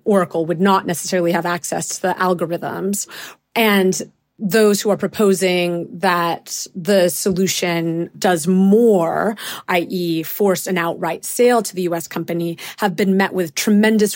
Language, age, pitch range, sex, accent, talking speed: English, 30-49, 170-200 Hz, female, American, 140 wpm